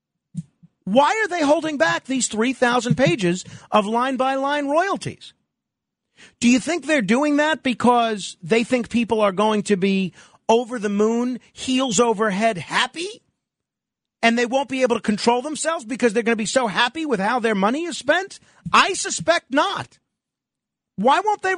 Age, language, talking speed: 40-59, English, 160 wpm